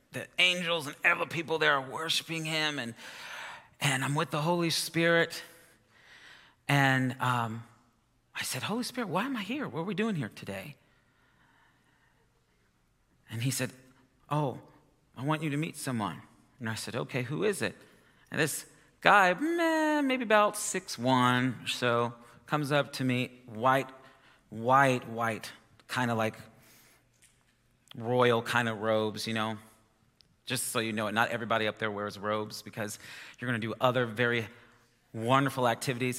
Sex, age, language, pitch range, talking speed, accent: male, 40-59, English, 115-150 Hz, 155 wpm, American